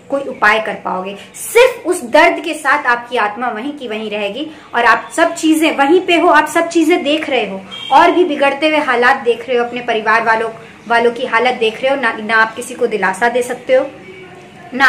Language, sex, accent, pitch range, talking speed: Hindi, male, native, 230-310 Hz, 220 wpm